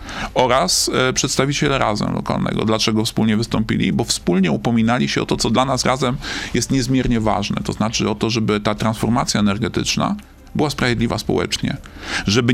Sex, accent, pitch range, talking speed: male, native, 110-135 Hz, 155 wpm